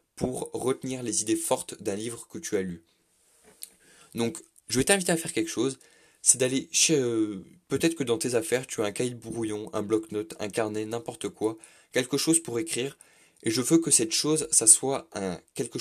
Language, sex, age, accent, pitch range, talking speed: French, male, 20-39, French, 110-135 Hz, 205 wpm